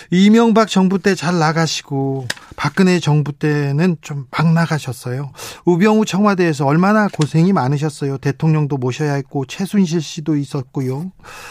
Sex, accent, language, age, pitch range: male, native, Korean, 40-59, 150-200 Hz